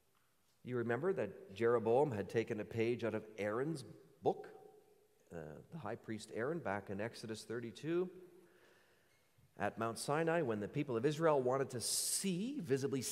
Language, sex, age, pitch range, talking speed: English, male, 40-59, 125-185 Hz, 150 wpm